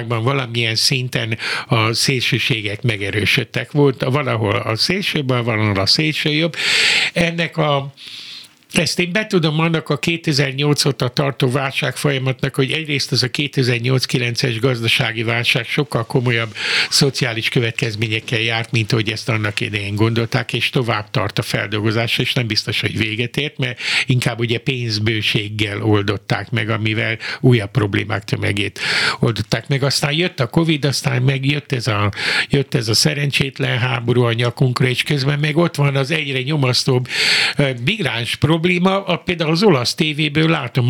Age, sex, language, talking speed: 60-79, male, Hungarian, 140 wpm